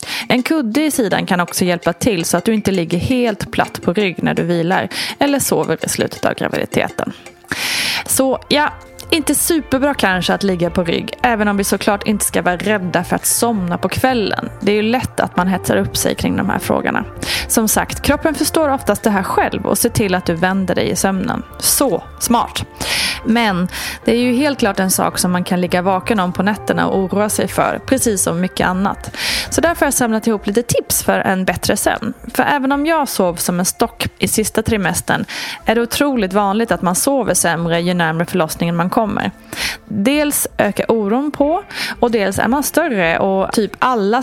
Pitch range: 185-255 Hz